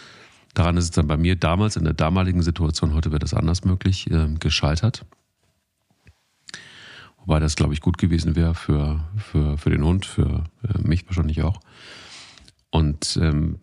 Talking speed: 165 wpm